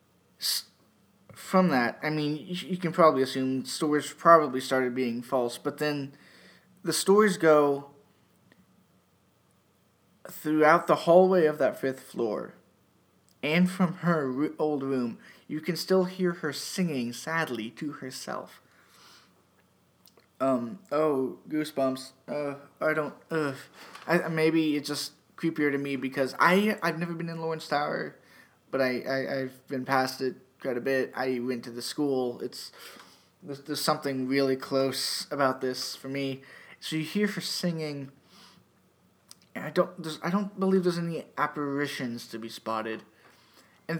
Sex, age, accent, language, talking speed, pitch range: male, 20-39, American, English, 140 wpm, 130-165 Hz